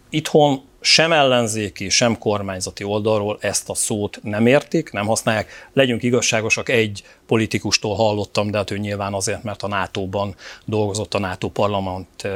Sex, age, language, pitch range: male, 40-59, Hungarian, 105-130 Hz